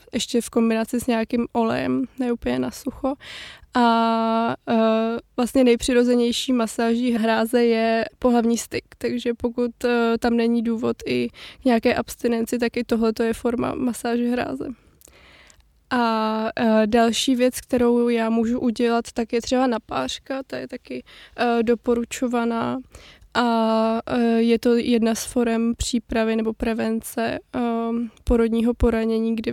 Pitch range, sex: 225-240 Hz, female